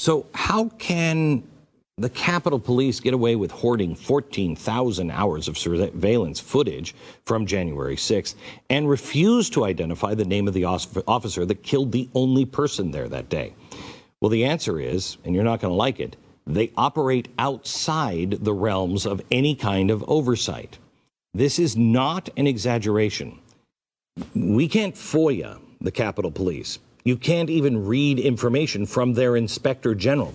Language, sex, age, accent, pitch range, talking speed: English, male, 50-69, American, 105-145 Hz, 150 wpm